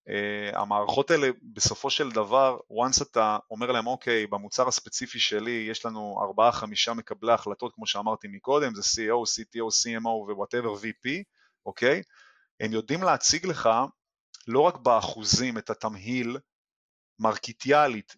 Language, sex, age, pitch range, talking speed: Hebrew, male, 30-49, 110-140 Hz, 135 wpm